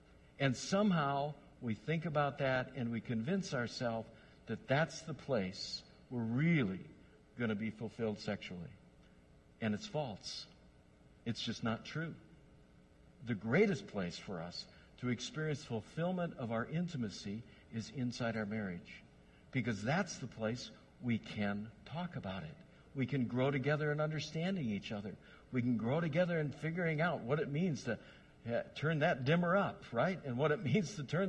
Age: 60-79